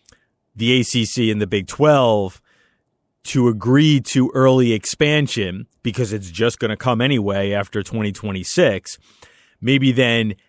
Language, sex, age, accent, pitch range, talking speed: English, male, 30-49, American, 105-135 Hz, 125 wpm